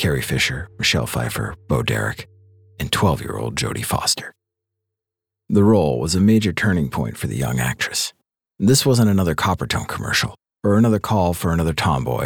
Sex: male